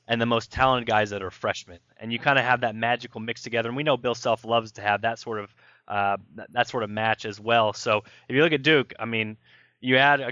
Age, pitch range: 20-39, 110-145 Hz